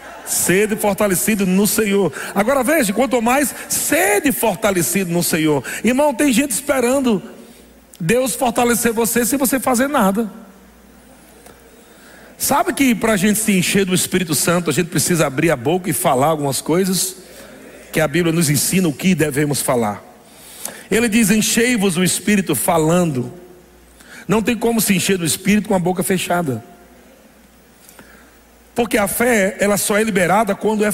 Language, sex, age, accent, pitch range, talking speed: Portuguese, male, 60-79, Brazilian, 170-230 Hz, 150 wpm